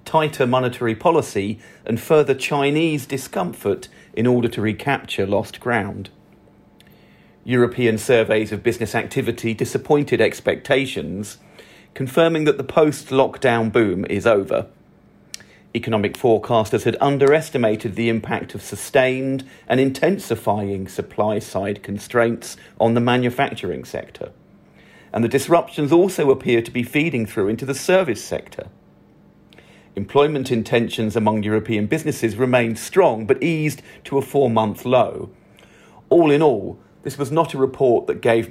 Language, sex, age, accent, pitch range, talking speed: English, male, 40-59, British, 115-140 Hz, 125 wpm